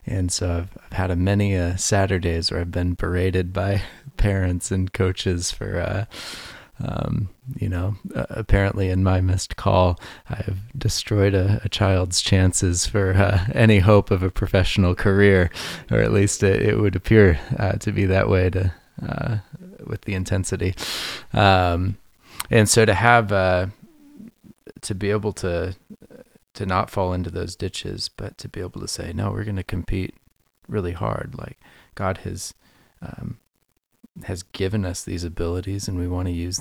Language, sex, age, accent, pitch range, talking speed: English, male, 30-49, American, 90-105 Hz, 170 wpm